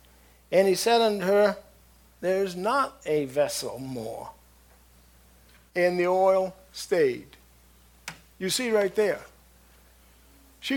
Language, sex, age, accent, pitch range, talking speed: English, male, 50-69, American, 150-235 Hz, 105 wpm